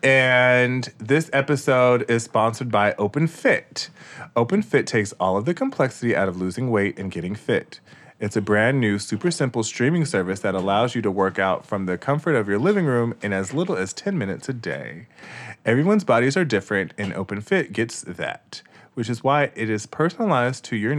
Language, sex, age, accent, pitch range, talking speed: English, male, 30-49, American, 100-130 Hz, 185 wpm